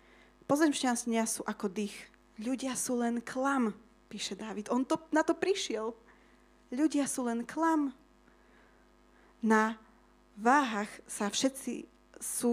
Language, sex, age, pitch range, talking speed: Slovak, female, 20-39, 210-250 Hz, 115 wpm